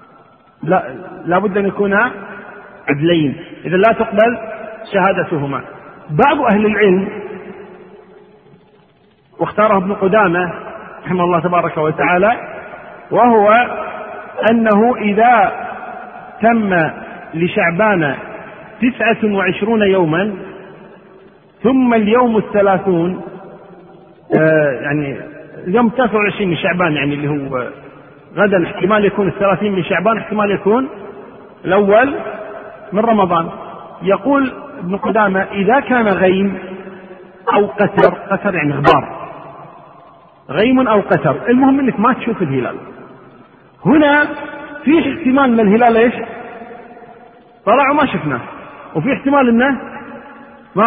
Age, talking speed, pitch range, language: 50-69, 95 wpm, 185-235 Hz, Arabic